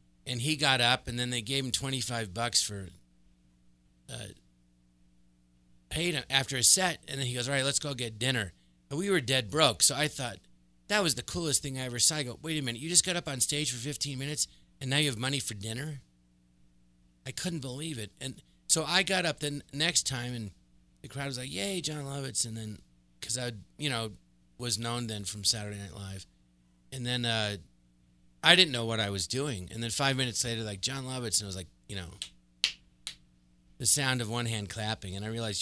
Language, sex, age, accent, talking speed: English, male, 30-49, American, 220 wpm